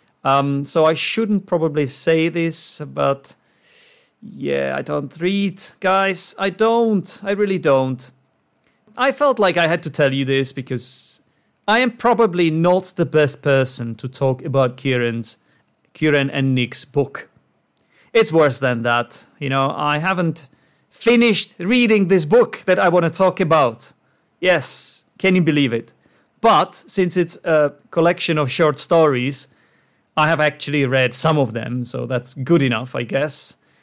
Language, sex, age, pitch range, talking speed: English, male, 30-49, 135-180 Hz, 155 wpm